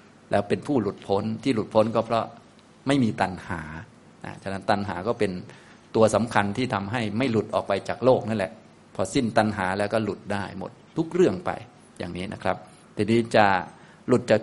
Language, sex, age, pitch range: Thai, male, 20-39, 100-115 Hz